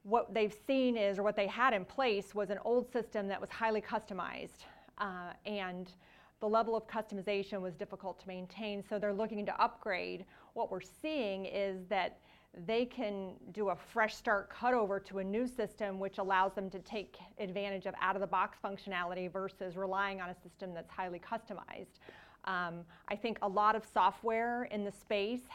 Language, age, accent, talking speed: English, 30-49, American, 180 wpm